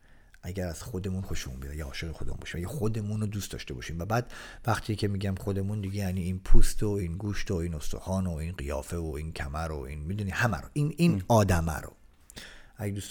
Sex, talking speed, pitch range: male, 220 wpm, 90-115 Hz